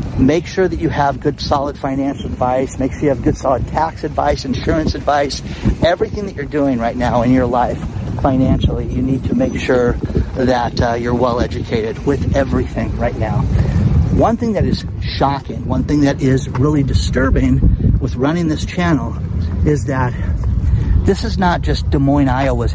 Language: English